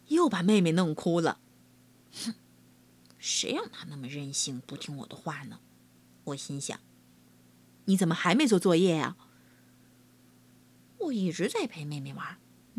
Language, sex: Chinese, female